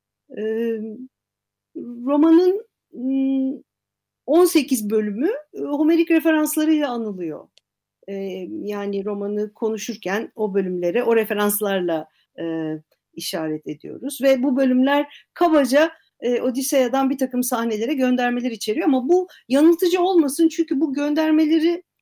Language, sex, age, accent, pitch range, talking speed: Turkish, female, 50-69, native, 205-290 Hz, 100 wpm